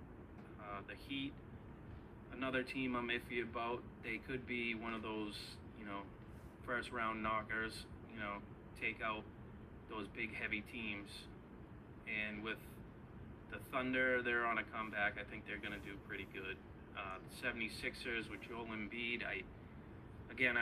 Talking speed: 150 wpm